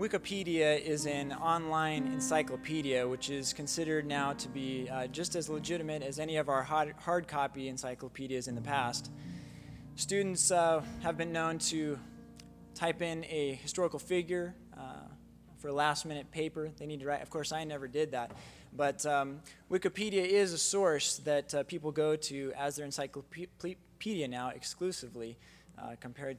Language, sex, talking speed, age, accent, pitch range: English, male, 160 wpm, 20-39, American, 125-165 Hz